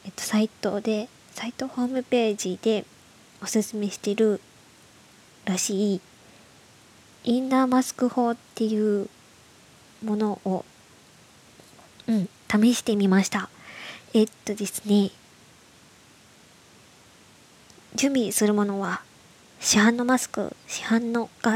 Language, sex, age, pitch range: Japanese, male, 20-39, 205-235 Hz